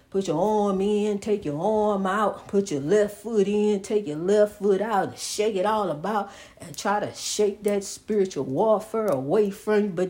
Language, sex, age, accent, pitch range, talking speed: English, female, 60-79, American, 145-205 Hz, 200 wpm